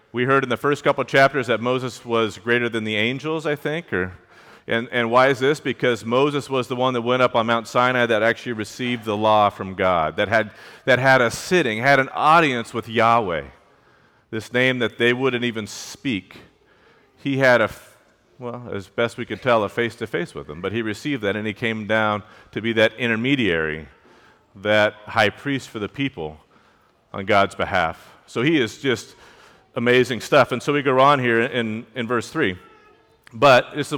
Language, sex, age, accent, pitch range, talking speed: English, male, 40-59, American, 110-135 Hz, 195 wpm